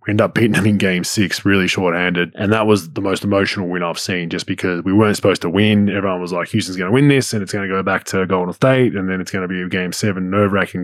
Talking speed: 295 wpm